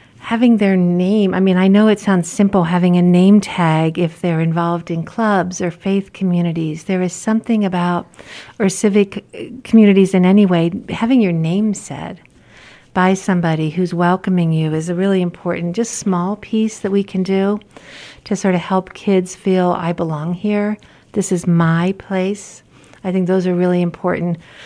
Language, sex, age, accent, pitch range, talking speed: English, female, 50-69, American, 175-205 Hz, 175 wpm